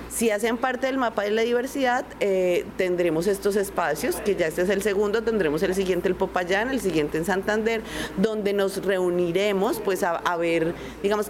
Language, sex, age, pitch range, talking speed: Spanish, female, 30-49, 175-215 Hz, 185 wpm